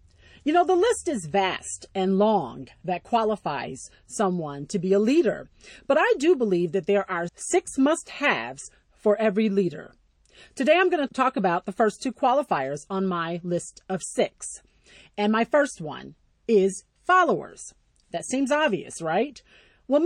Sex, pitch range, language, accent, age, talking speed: female, 190-280 Hz, English, American, 40-59, 160 wpm